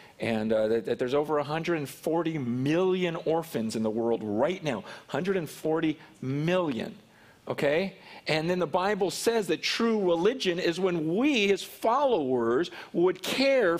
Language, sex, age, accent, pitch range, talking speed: English, male, 40-59, American, 140-195 Hz, 140 wpm